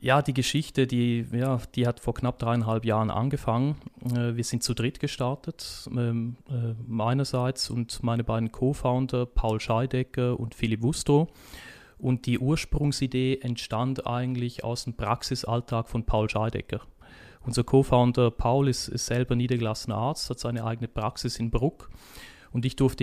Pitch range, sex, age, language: 115-130 Hz, male, 30-49, German